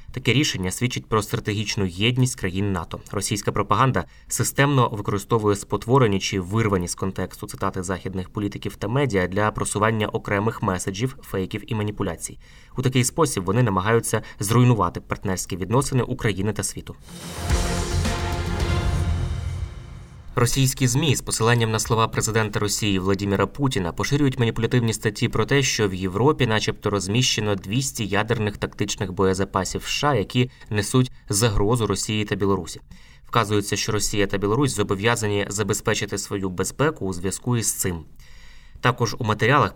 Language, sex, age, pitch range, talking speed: Ukrainian, male, 20-39, 95-120 Hz, 130 wpm